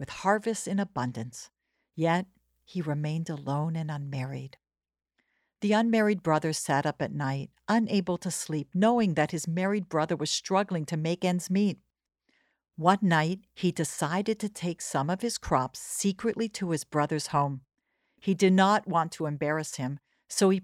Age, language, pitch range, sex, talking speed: 60-79, English, 150-205 Hz, female, 160 wpm